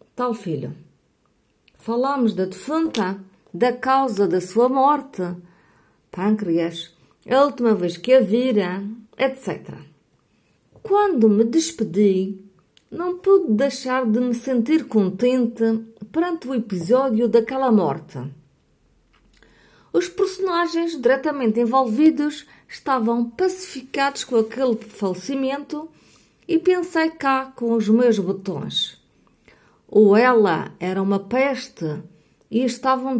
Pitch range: 200-270 Hz